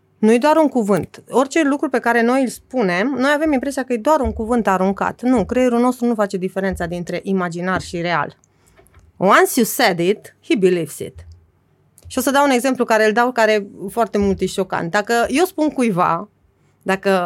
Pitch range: 190-270 Hz